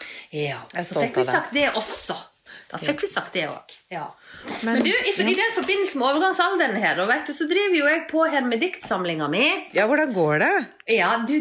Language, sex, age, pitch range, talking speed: English, female, 30-49, 190-290 Hz, 220 wpm